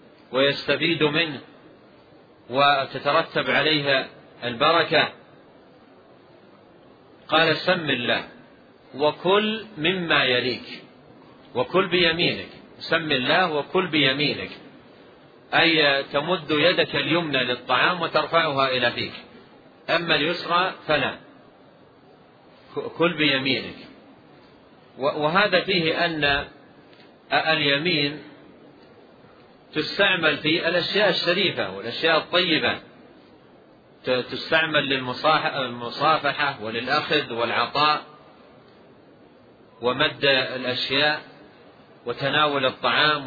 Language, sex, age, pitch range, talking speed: Arabic, male, 40-59, 135-165 Hz, 65 wpm